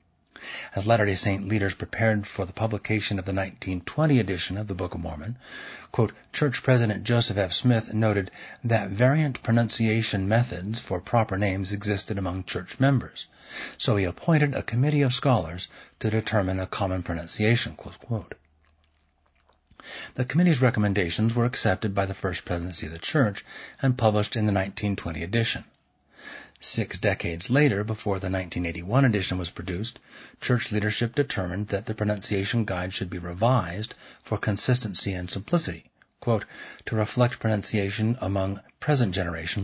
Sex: male